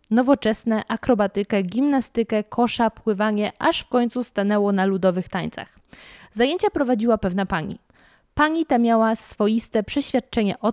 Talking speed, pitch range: 125 wpm, 210-245 Hz